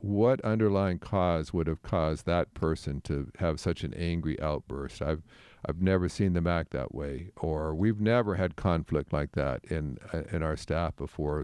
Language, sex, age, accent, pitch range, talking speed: English, male, 50-69, American, 85-110 Hz, 180 wpm